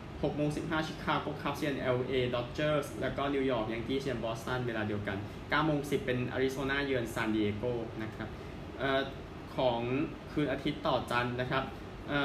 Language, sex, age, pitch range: Thai, male, 20-39, 115-150 Hz